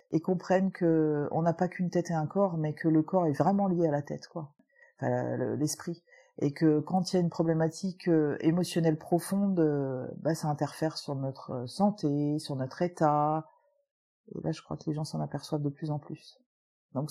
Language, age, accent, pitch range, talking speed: French, 40-59, French, 155-200 Hz, 200 wpm